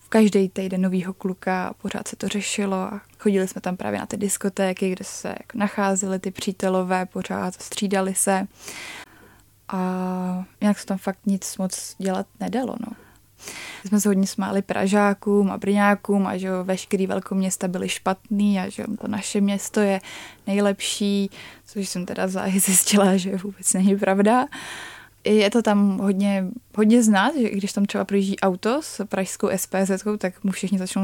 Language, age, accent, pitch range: Czech, 20-39, native, 190-205 Hz